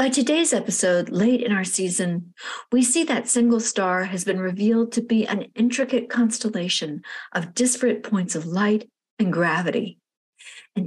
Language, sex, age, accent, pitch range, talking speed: English, female, 50-69, American, 180-245 Hz, 155 wpm